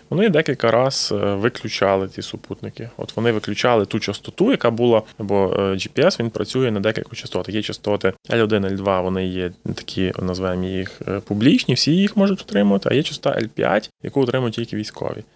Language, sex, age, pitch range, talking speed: Ukrainian, male, 20-39, 105-135 Hz, 165 wpm